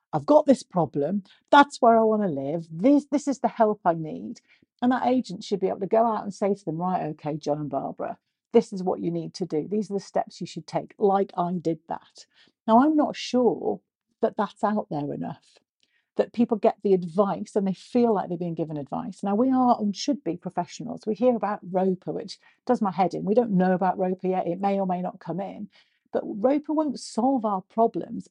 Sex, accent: female, British